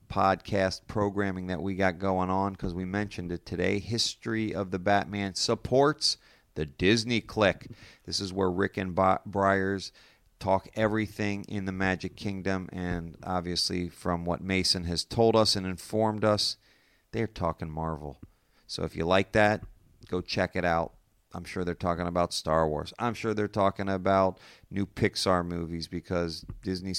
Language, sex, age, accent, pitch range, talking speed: English, male, 40-59, American, 90-105 Hz, 160 wpm